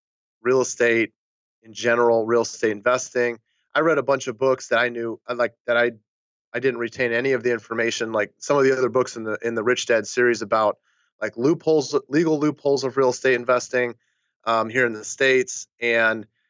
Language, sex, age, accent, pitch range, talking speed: English, male, 30-49, American, 110-130 Hz, 200 wpm